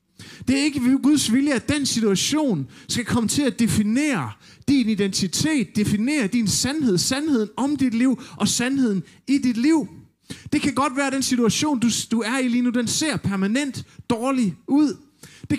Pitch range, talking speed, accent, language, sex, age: 150-240 Hz, 175 wpm, native, Danish, male, 30-49